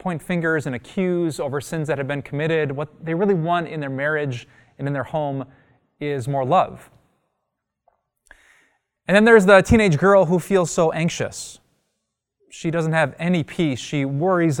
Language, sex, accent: English, male, American